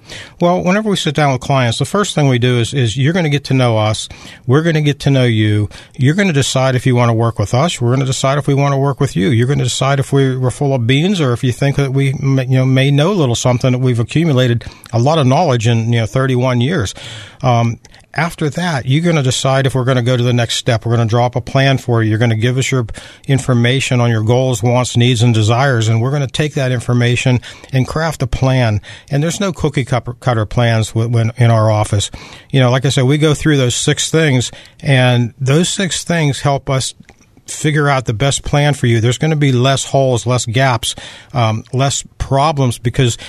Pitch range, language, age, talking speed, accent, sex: 120-140 Hz, English, 50-69, 250 wpm, American, male